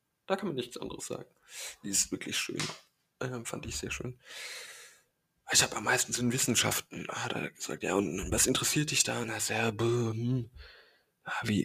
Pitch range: 105-125 Hz